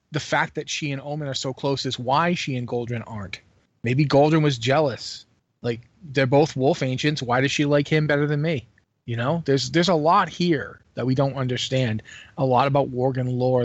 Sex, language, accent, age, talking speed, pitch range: male, English, American, 30-49, 210 wpm, 120-150 Hz